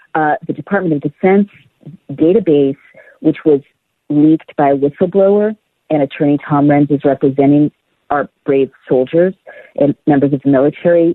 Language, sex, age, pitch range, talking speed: English, female, 50-69, 140-175 Hz, 140 wpm